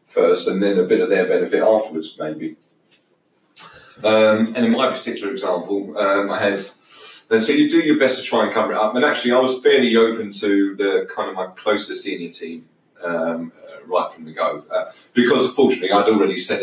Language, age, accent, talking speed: English, 30-49, British, 200 wpm